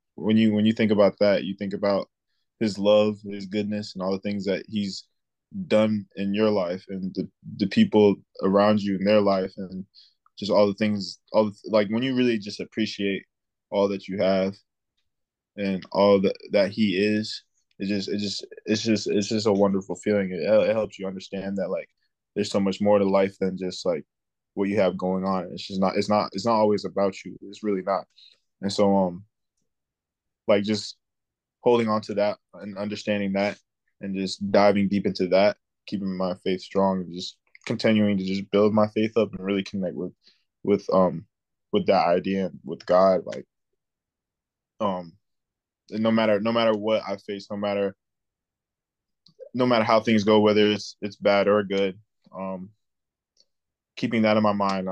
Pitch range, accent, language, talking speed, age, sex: 95-105 Hz, American, English, 190 wpm, 20-39, male